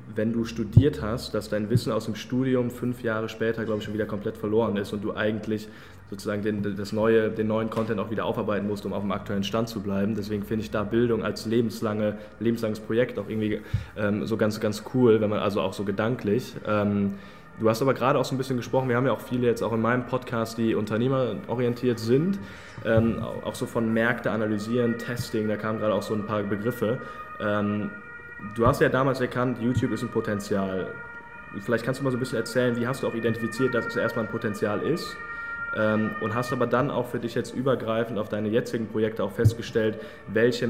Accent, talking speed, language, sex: German, 210 wpm, German, male